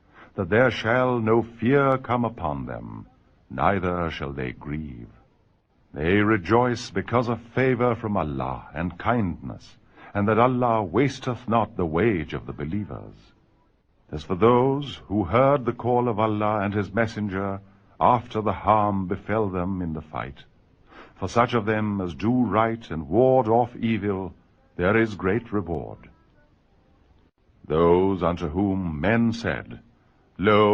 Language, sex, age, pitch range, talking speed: Urdu, male, 60-79, 85-115 Hz, 140 wpm